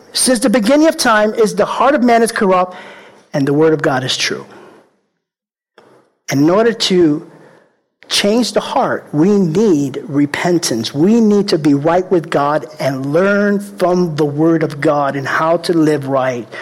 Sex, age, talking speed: male, 50-69, 170 wpm